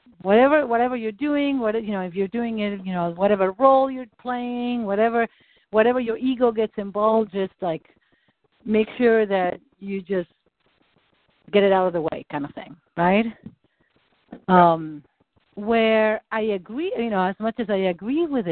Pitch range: 180-240 Hz